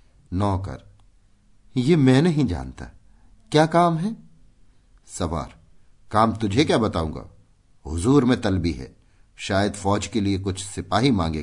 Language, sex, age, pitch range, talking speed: Hindi, male, 50-69, 90-120 Hz, 125 wpm